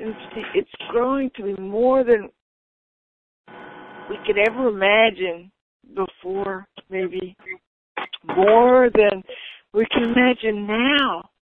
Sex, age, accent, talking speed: female, 60-79, American, 95 wpm